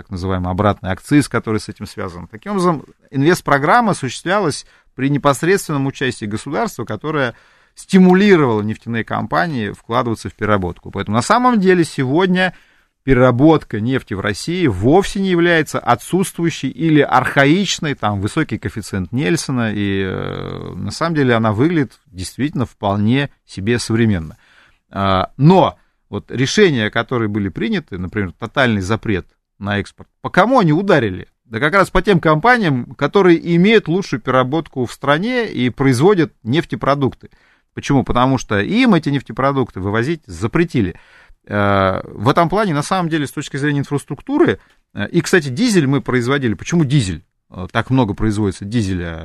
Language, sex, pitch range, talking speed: Russian, male, 105-160 Hz, 135 wpm